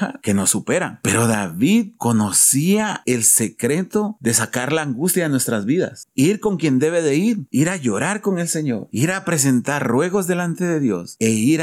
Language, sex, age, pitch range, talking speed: Spanish, male, 40-59, 115-160 Hz, 185 wpm